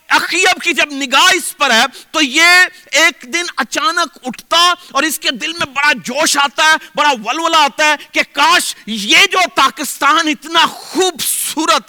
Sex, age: male, 40-59